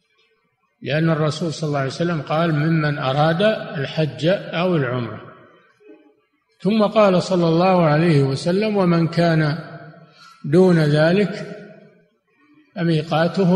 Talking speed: 100 wpm